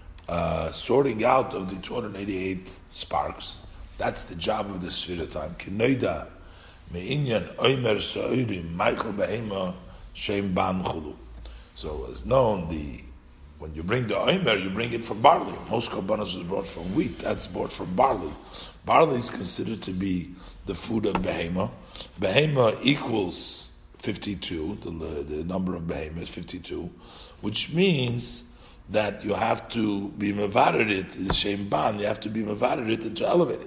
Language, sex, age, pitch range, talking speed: English, male, 50-69, 85-105 Hz, 130 wpm